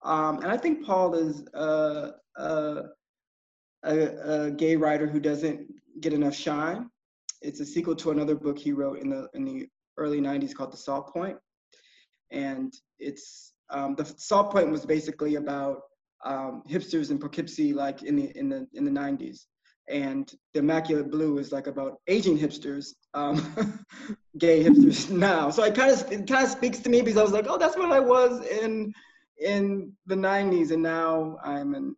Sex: male